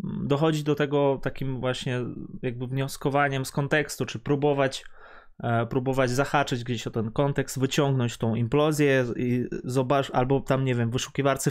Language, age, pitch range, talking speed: Polish, 20-39, 130-160 Hz, 145 wpm